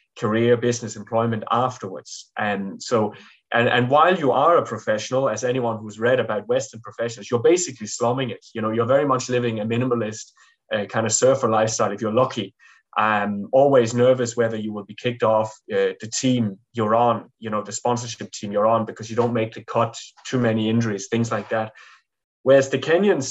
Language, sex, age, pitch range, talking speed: English, male, 20-39, 110-130 Hz, 195 wpm